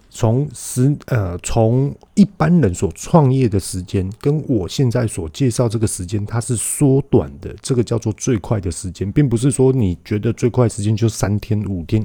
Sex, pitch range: male, 90-120 Hz